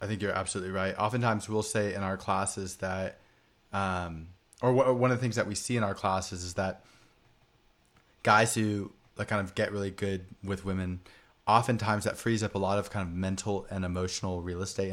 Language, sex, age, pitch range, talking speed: English, male, 20-39, 95-110 Hz, 205 wpm